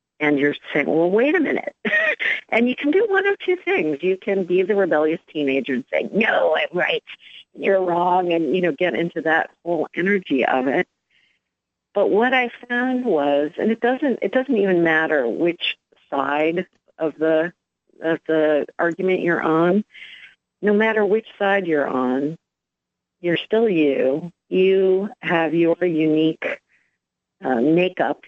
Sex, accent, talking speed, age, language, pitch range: female, American, 155 wpm, 50-69, English, 145-195 Hz